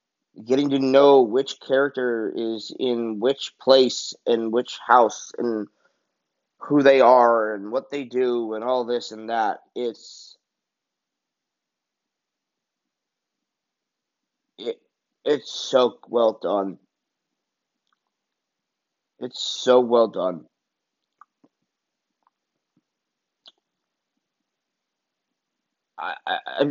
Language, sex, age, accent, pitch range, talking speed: English, male, 30-49, American, 105-135 Hz, 70 wpm